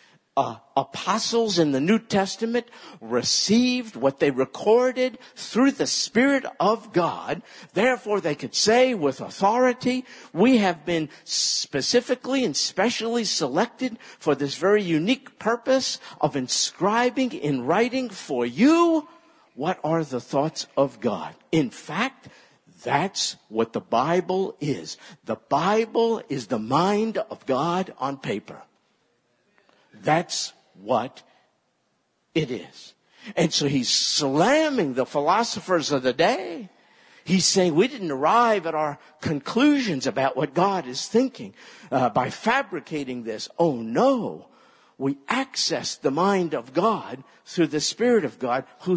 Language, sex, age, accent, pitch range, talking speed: English, male, 50-69, American, 150-235 Hz, 130 wpm